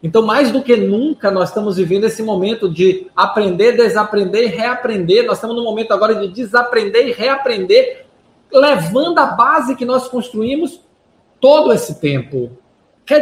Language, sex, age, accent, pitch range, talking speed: Portuguese, male, 20-39, Brazilian, 175-255 Hz, 155 wpm